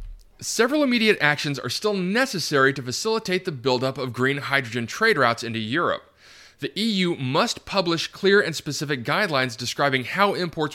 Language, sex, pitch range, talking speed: English, male, 130-190 Hz, 155 wpm